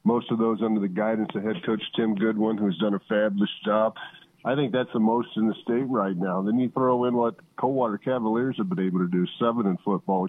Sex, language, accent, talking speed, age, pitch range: male, English, American, 240 wpm, 50-69, 105-125 Hz